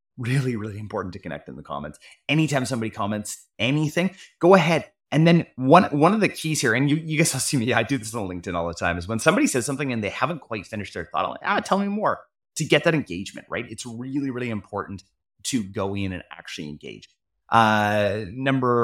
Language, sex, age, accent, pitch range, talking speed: English, male, 30-49, American, 95-145 Hz, 225 wpm